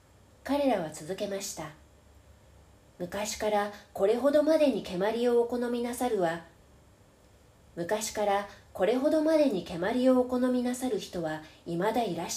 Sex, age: female, 40-59